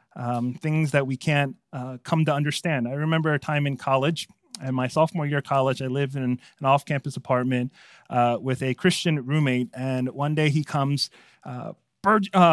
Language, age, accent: English, 30-49, American